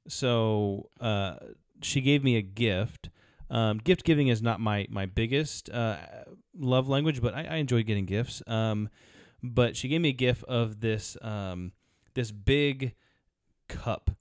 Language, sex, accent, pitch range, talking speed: English, male, American, 100-120 Hz, 150 wpm